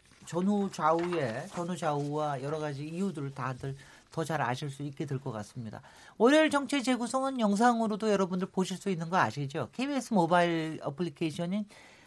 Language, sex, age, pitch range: Korean, male, 40-59, 150-215 Hz